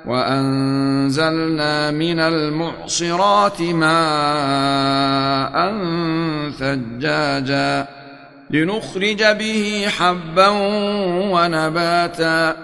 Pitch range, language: 150-175 Hz, Arabic